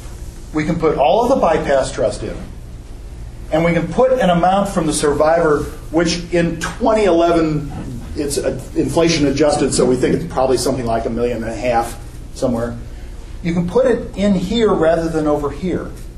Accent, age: American, 50-69